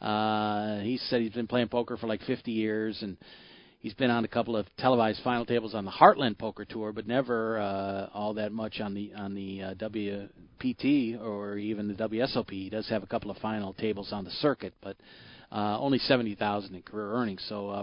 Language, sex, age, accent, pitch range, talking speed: English, male, 40-59, American, 105-130 Hz, 210 wpm